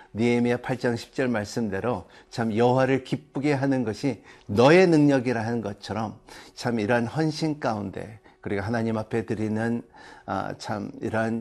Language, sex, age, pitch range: Korean, male, 50-69, 105-135 Hz